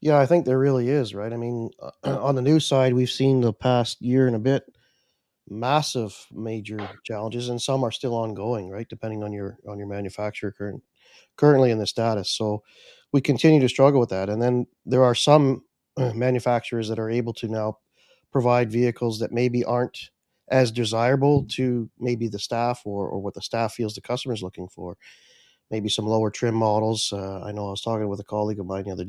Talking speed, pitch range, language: 205 wpm, 105-125 Hz, English